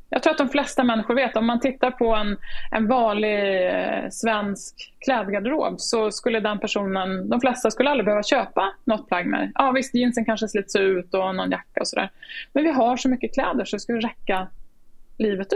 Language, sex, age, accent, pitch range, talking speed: Swedish, female, 20-39, native, 200-245 Hz, 205 wpm